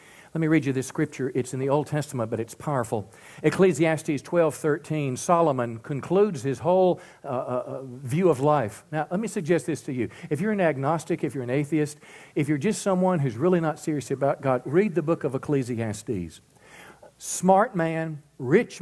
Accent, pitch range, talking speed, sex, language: American, 130-175 Hz, 185 wpm, male, English